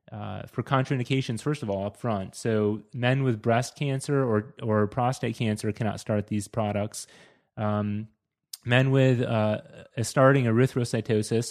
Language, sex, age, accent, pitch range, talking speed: English, male, 30-49, American, 110-135 Hz, 145 wpm